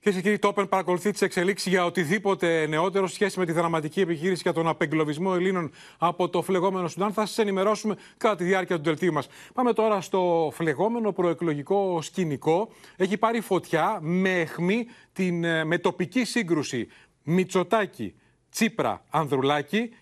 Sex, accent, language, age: male, native, Greek, 30-49